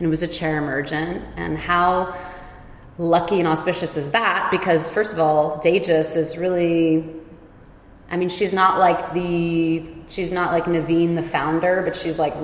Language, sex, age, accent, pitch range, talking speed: English, female, 20-39, American, 150-170 Hz, 170 wpm